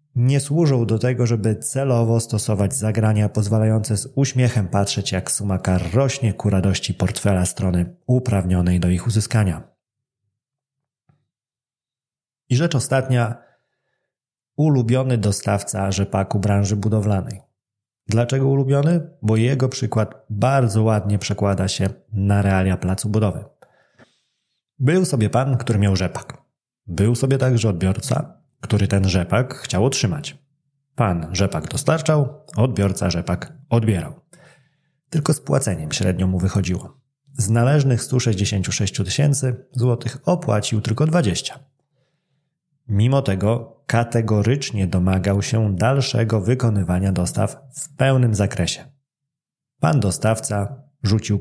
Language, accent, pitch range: Polish, native, 100-135 Hz